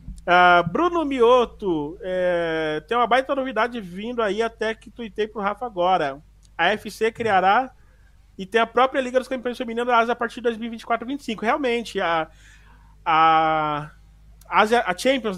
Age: 20-39